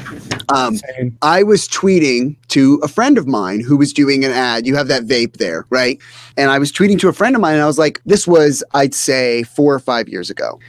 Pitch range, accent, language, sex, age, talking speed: 135-185 Hz, American, English, male, 30-49, 235 wpm